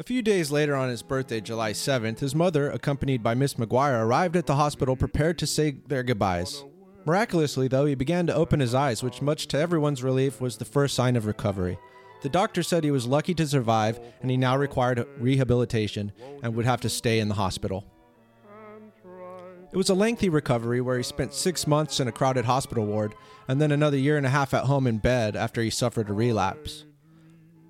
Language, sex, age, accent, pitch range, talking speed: English, male, 30-49, American, 115-155 Hz, 205 wpm